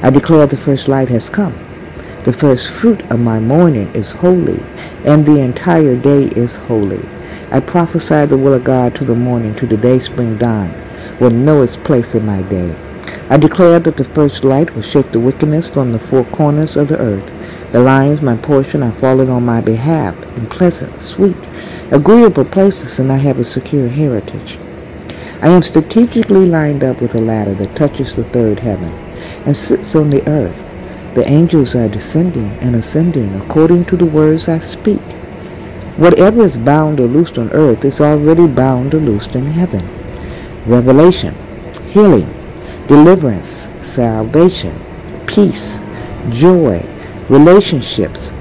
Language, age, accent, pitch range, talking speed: English, 60-79, American, 115-155 Hz, 160 wpm